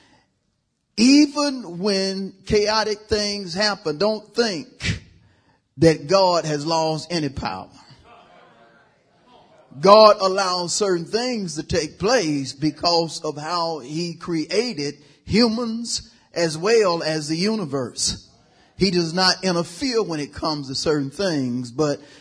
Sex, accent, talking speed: male, American, 115 wpm